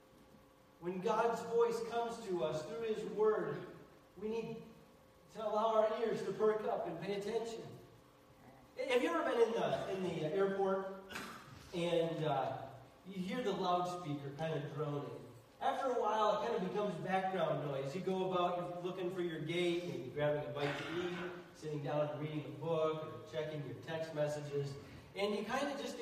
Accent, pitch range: American, 155-225 Hz